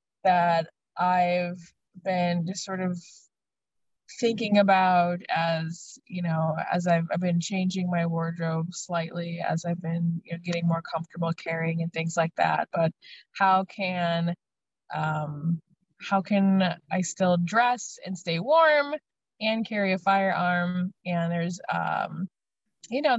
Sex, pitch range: female, 170-195 Hz